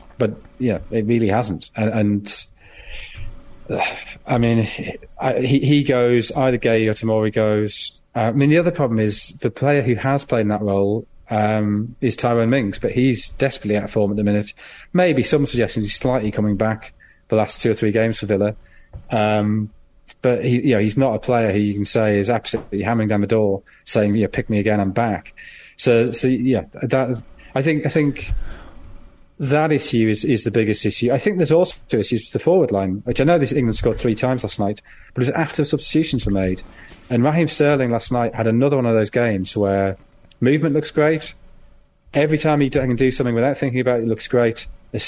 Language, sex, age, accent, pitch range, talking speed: English, male, 30-49, British, 105-130 Hz, 215 wpm